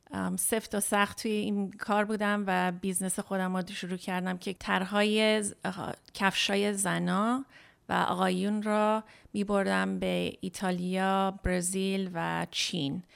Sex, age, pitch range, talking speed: female, 30-49, 180-210 Hz, 125 wpm